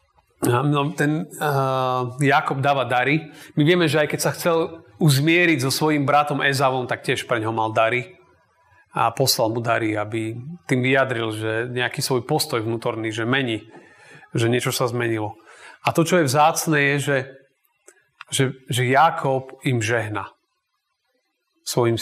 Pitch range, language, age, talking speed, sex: 115-150 Hz, Slovak, 30-49, 145 wpm, male